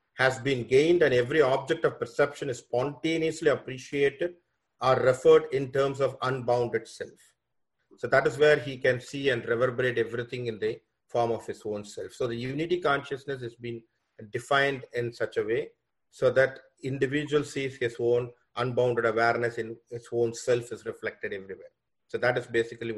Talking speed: 170 wpm